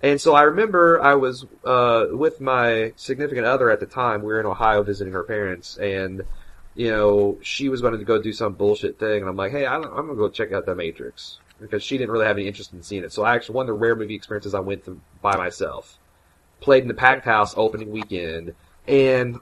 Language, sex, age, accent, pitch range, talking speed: English, male, 30-49, American, 100-125 Hz, 240 wpm